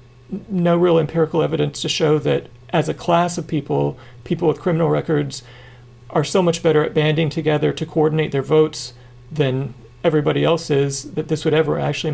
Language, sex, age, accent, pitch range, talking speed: English, male, 40-59, American, 135-160 Hz, 180 wpm